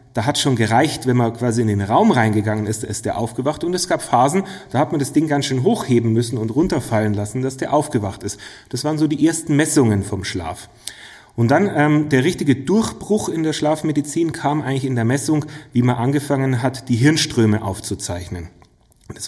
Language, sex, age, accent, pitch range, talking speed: German, male, 30-49, German, 110-145 Hz, 200 wpm